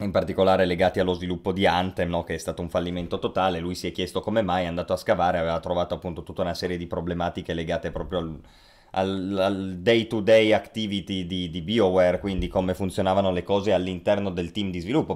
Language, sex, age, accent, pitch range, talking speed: Italian, male, 20-39, native, 90-110 Hz, 200 wpm